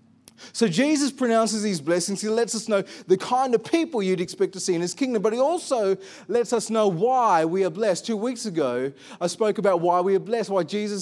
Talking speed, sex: 230 wpm, male